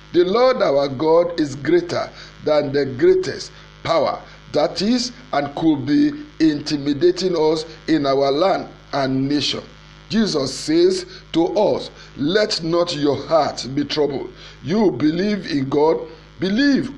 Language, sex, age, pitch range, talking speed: English, male, 50-69, 145-210 Hz, 130 wpm